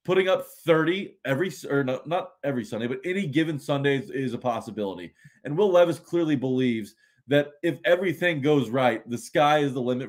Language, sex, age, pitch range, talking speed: English, male, 20-39, 120-155 Hz, 185 wpm